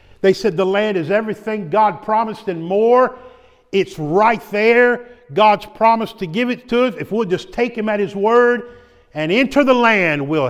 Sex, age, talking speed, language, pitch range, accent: male, 50-69, 190 wpm, English, 150-205 Hz, American